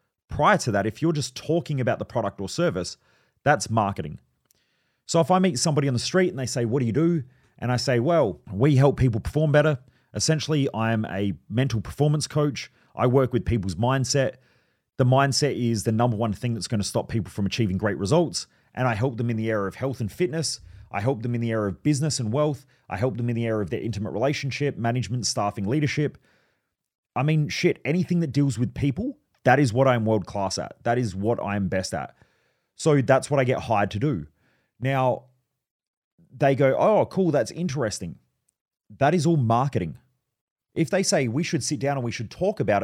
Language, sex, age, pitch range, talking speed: English, male, 30-49, 115-145 Hz, 210 wpm